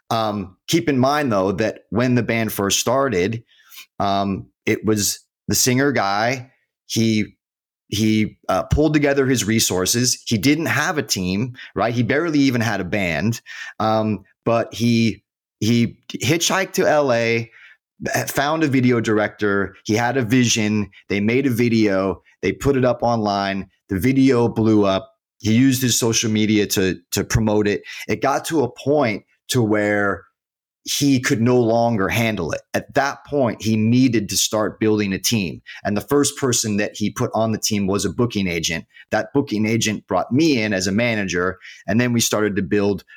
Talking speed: 175 wpm